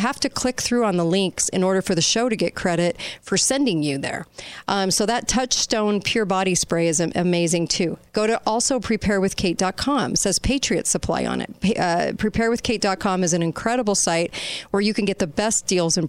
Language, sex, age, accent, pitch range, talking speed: English, female, 40-59, American, 170-210 Hz, 200 wpm